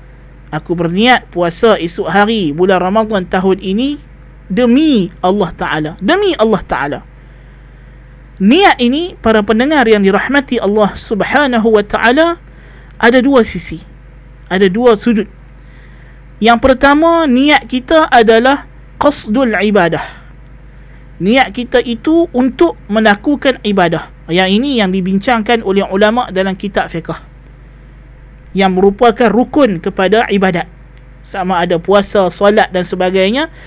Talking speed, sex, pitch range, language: 115 wpm, male, 170-235 Hz, Malay